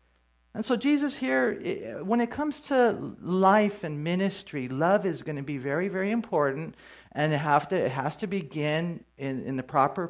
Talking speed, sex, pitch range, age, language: 185 wpm, male, 120-180 Hz, 50-69, English